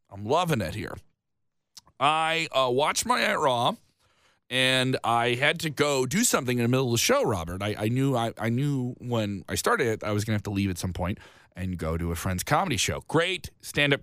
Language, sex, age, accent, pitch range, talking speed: English, male, 30-49, American, 100-155 Hz, 225 wpm